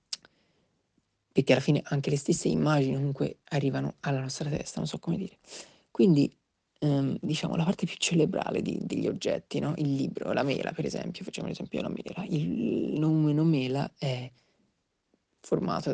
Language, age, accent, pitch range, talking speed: Italian, 30-49, native, 145-190 Hz, 160 wpm